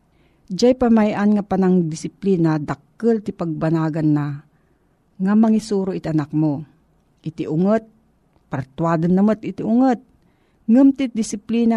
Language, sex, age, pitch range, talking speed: Filipino, female, 50-69, 160-210 Hz, 100 wpm